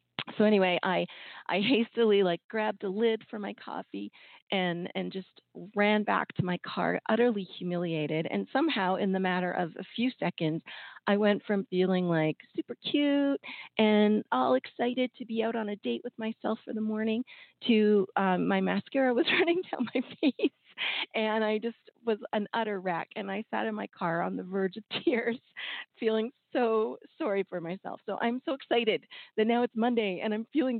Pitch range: 175-225 Hz